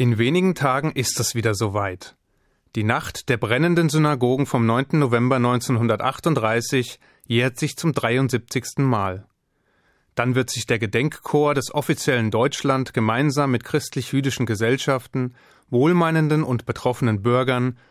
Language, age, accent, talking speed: German, 30-49, German, 125 wpm